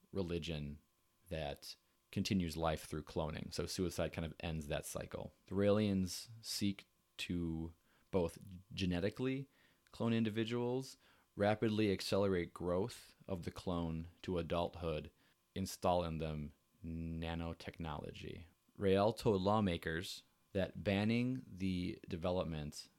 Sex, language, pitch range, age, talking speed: male, English, 80-95 Hz, 30-49, 105 wpm